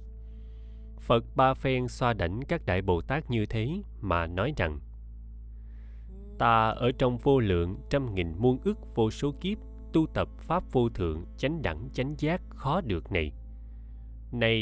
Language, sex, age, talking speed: Vietnamese, male, 20-39, 160 wpm